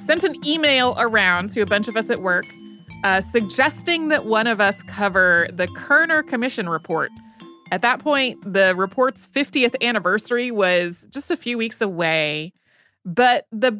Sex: female